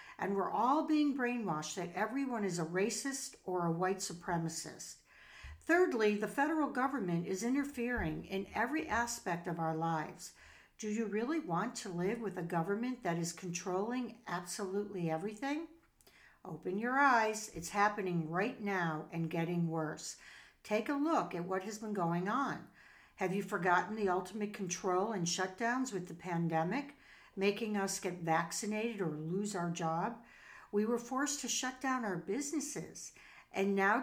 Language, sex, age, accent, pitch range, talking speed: English, female, 60-79, American, 180-245 Hz, 155 wpm